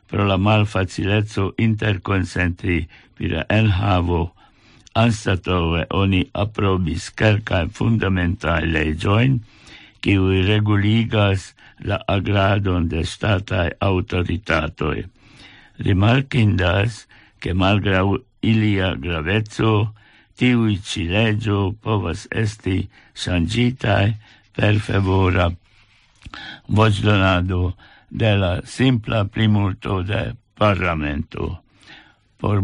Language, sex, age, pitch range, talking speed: English, male, 60-79, 95-115 Hz, 75 wpm